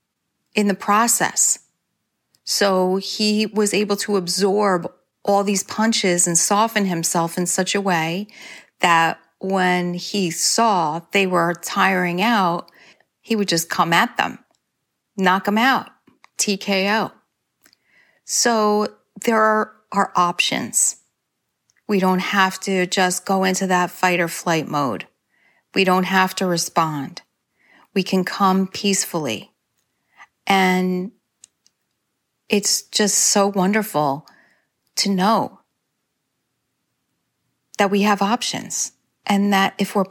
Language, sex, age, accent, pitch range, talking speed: English, female, 40-59, American, 180-205 Hz, 115 wpm